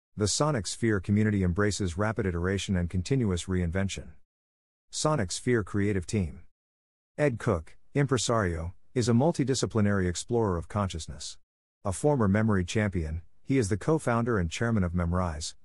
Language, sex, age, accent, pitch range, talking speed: English, male, 50-69, American, 90-115 Hz, 135 wpm